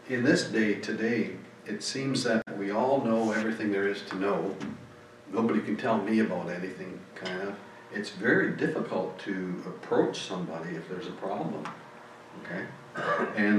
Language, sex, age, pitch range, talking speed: English, male, 60-79, 100-130 Hz, 155 wpm